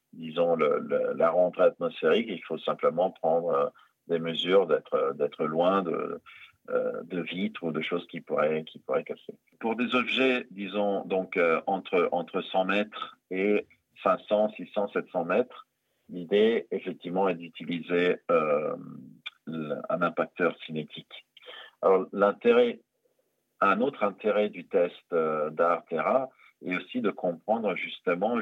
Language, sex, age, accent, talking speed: French, male, 40-59, French, 135 wpm